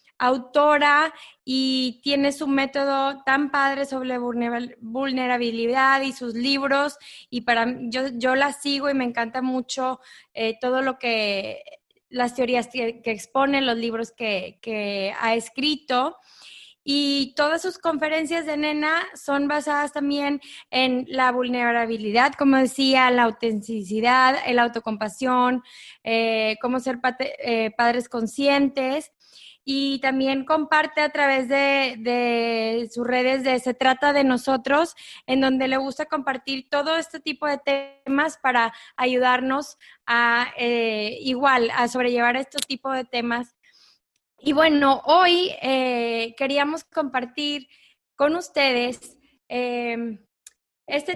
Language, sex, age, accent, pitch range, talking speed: English, female, 20-39, Mexican, 245-285 Hz, 125 wpm